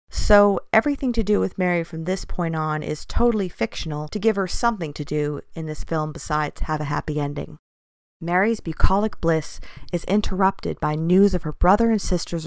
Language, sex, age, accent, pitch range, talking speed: English, female, 40-59, American, 160-200 Hz, 190 wpm